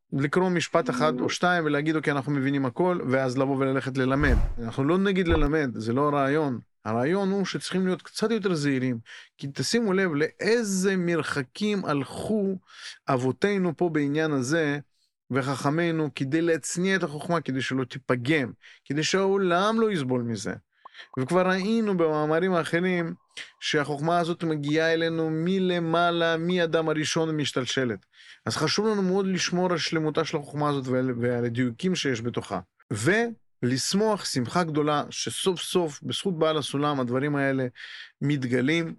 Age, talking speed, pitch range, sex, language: 30-49, 135 wpm, 130-165 Hz, male, Hebrew